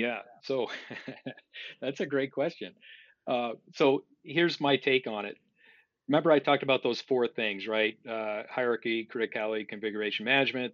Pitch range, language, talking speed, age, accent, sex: 110-130 Hz, English, 145 wpm, 40-59, American, male